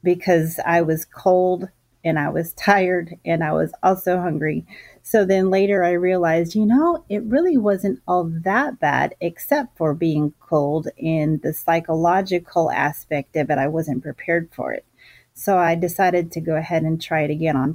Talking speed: 175 wpm